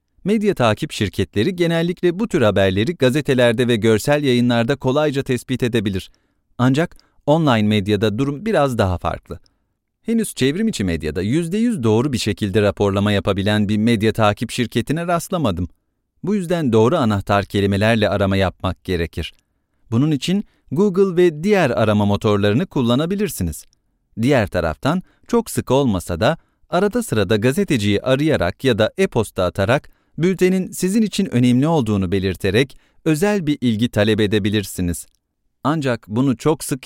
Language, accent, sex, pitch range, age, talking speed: English, Turkish, male, 100-145 Hz, 40-59, 130 wpm